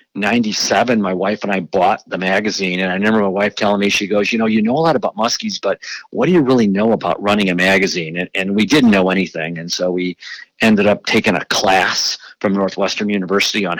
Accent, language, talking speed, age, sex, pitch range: American, English, 230 wpm, 50-69, male, 95-105 Hz